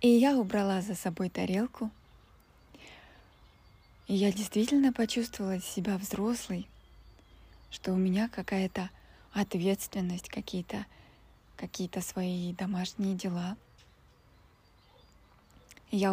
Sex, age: female, 20-39